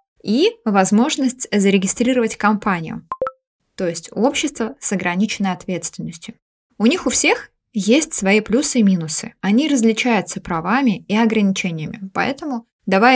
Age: 20-39